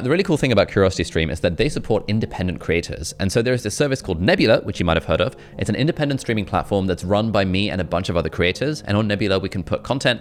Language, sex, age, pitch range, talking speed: English, male, 20-39, 85-110 Hz, 270 wpm